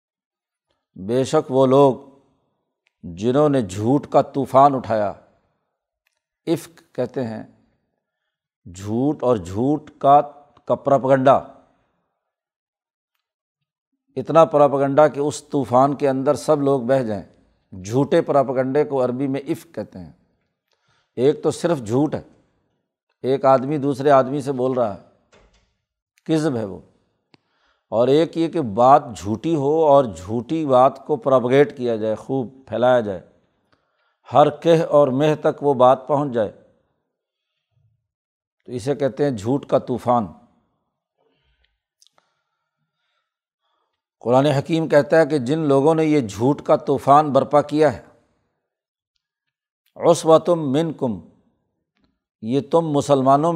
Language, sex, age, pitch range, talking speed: Urdu, male, 60-79, 125-150 Hz, 120 wpm